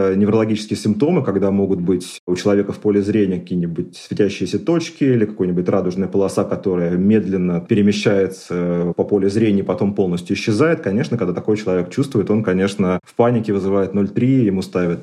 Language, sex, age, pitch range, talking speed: Russian, male, 30-49, 95-115 Hz, 160 wpm